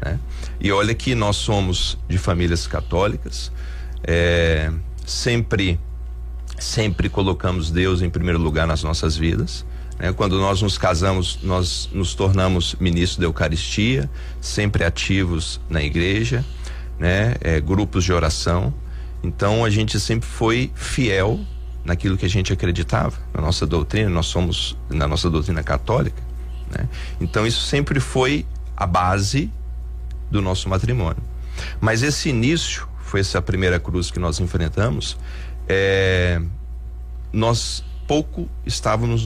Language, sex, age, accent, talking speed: Portuguese, male, 40-59, Brazilian, 130 wpm